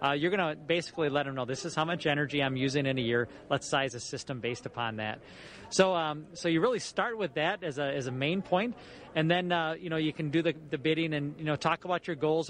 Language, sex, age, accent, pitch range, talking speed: English, male, 30-49, American, 140-170 Hz, 275 wpm